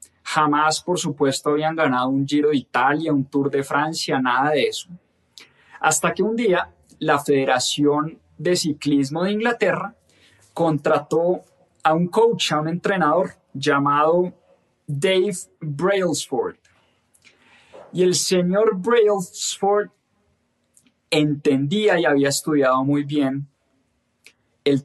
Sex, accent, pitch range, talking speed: male, Colombian, 145-195 Hz, 115 wpm